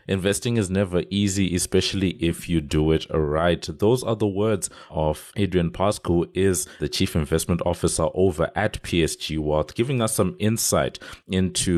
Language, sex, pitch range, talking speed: English, male, 75-95 Hz, 160 wpm